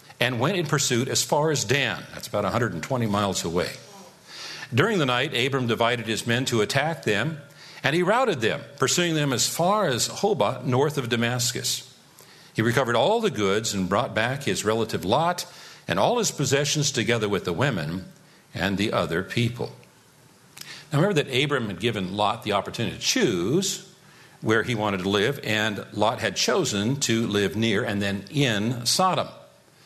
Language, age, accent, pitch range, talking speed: English, 50-69, American, 110-150 Hz, 175 wpm